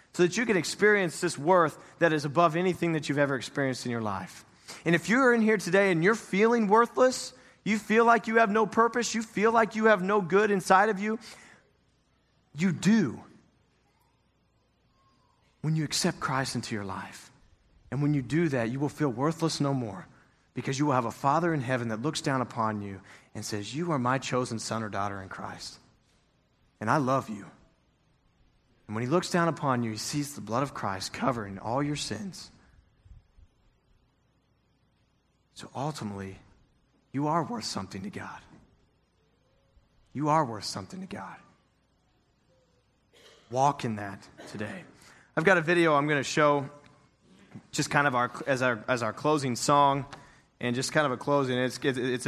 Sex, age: male, 30-49